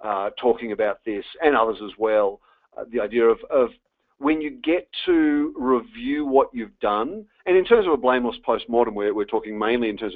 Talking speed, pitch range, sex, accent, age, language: 200 wpm, 105-160 Hz, male, Australian, 40-59, English